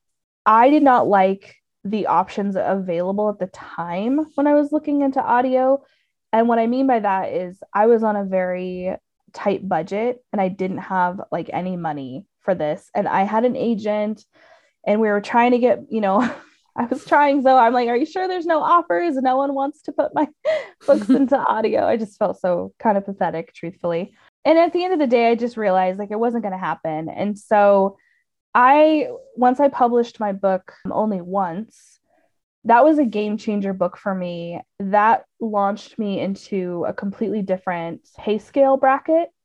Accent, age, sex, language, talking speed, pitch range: American, 20-39, female, English, 190 wpm, 190-245 Hz